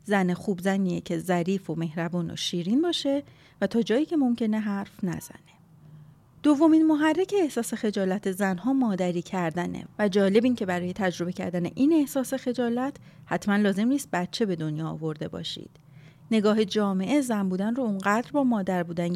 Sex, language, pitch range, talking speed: female, Persian, 175-245 Hz, 160 wpm